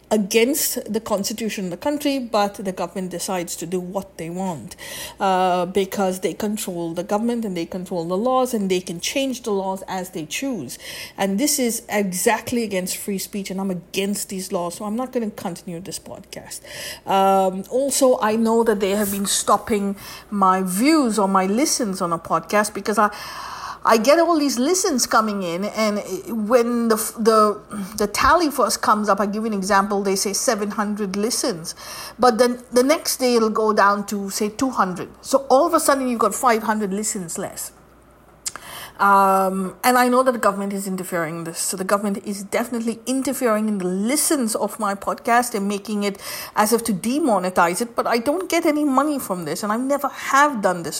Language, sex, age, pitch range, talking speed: English, female, 50-69, 185-235 Hz, 195 wpm